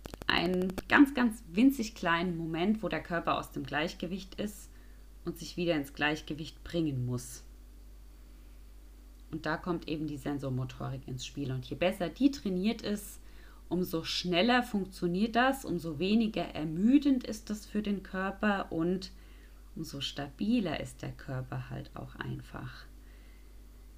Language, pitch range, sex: German, 135-180 Hz, female